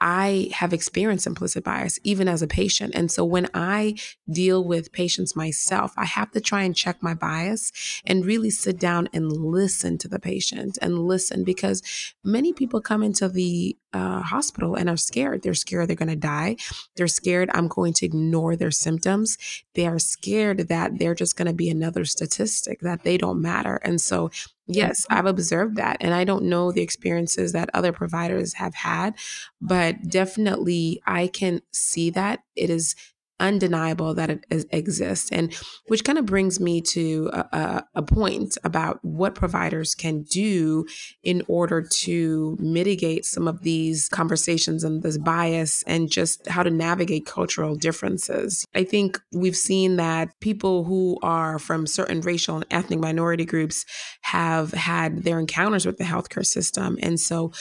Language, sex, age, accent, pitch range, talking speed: English, female, 20-39, American, 160-190 Hz, 170 wpm